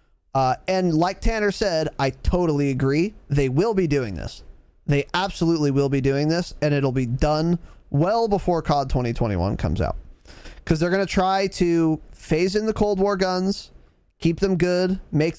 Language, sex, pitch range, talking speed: English, male, 140-185 Hz, 175 wpm